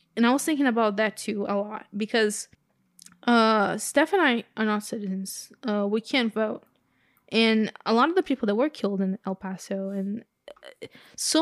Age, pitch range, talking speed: 10-29, 210-245 Hz, 185 wpm